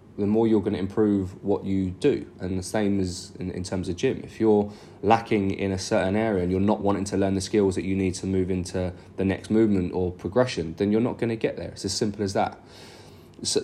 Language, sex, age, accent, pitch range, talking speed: English, male, 20-39, British, 100-115 Hz, 250 wpm